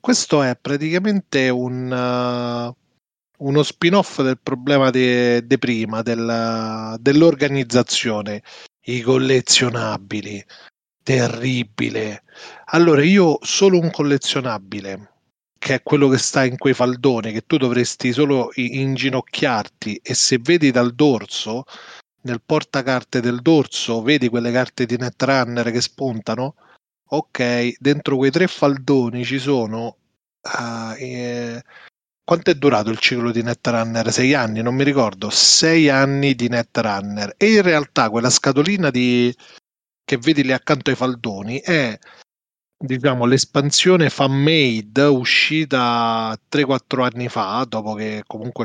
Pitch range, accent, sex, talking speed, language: 120-145 Hz, native, male, 115 wpm, Italian